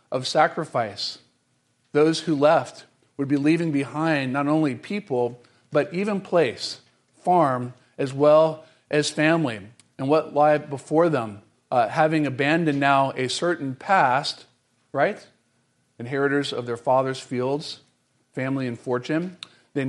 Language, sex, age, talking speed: English, male, 40-59, 125 wpm